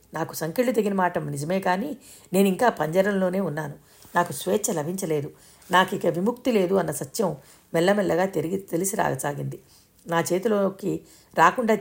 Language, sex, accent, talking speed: Telugu, female, native, 125 wpm